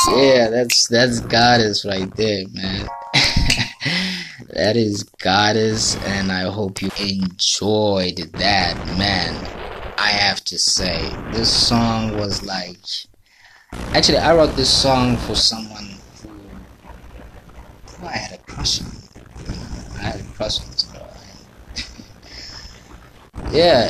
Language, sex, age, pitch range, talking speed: English, male, 20-39, 95-120 Hz, 120 wpm